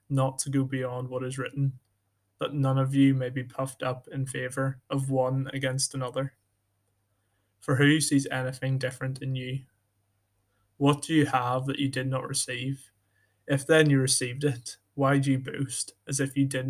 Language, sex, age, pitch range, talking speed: English, male, 20-39, 105-140 Hz, 180 wpm